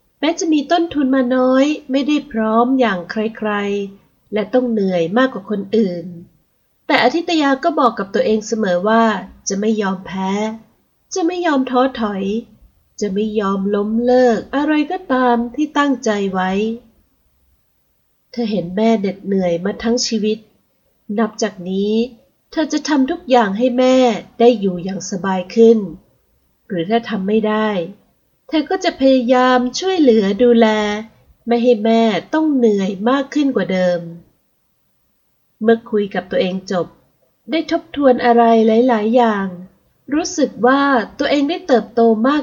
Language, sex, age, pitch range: Thai, female, 30-49, 195-260 Hz